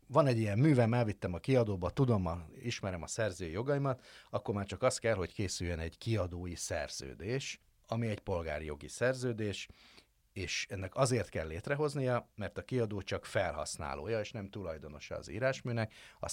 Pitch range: 80-115 Hz